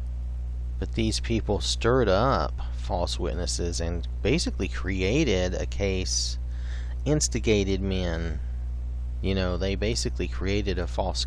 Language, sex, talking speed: English, male, 110 wpm